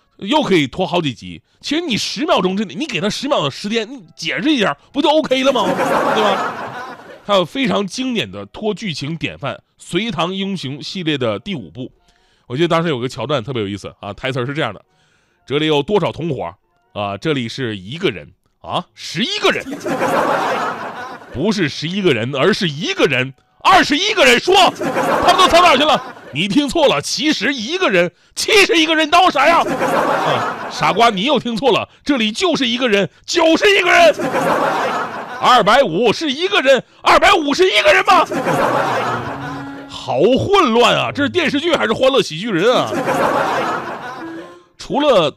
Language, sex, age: Chinese, male, 30-49